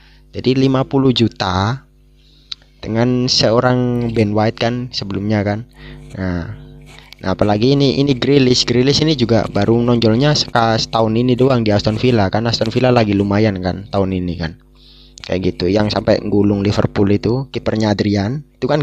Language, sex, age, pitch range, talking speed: Indonesian, male, 20-39, 105-125 Hz, 155 wpm